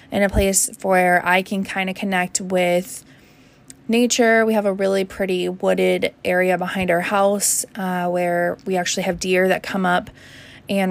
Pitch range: 180-215 Hz